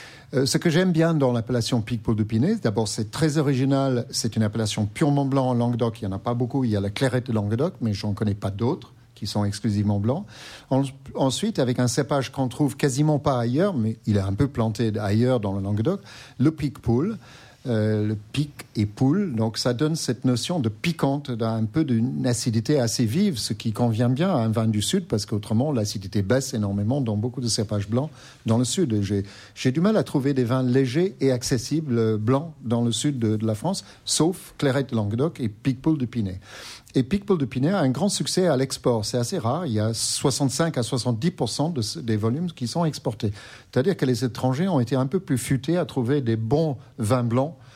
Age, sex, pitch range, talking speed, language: 50-69, male, 115-140 Hz, 215 wpm, French